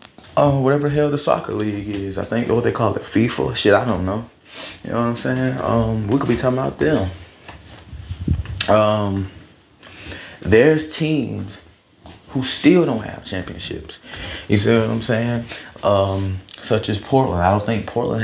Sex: male